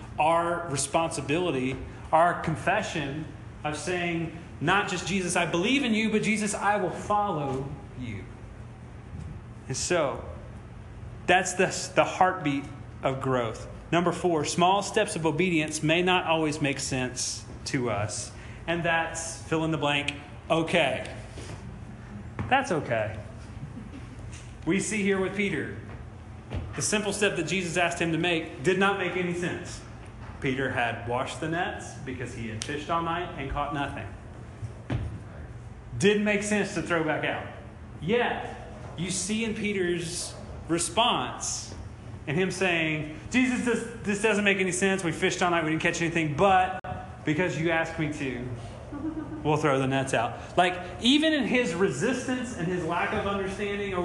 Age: 30-49